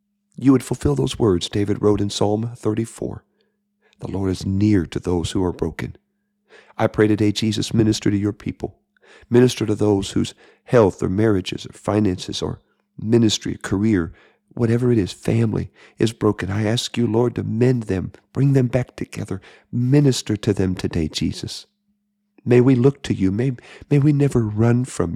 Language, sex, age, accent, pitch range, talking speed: English, male, 50-69, American, 95-125 Hz, 170 wpm